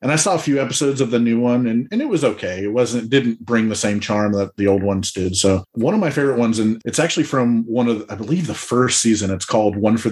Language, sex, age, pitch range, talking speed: English, male, 30-49, 100-120 Hz, 295 wpm